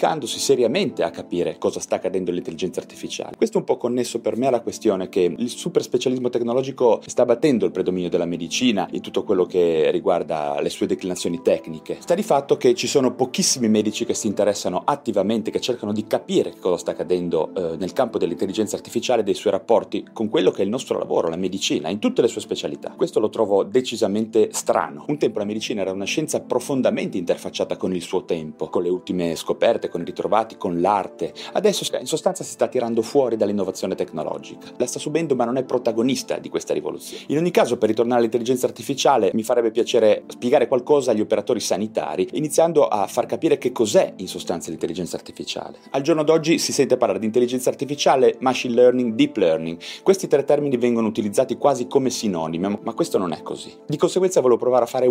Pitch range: 110-180 Hz